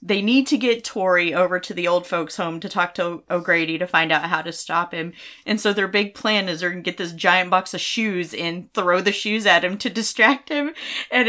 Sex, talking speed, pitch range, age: female, 255 wpm, 170-225 Hz, 30-49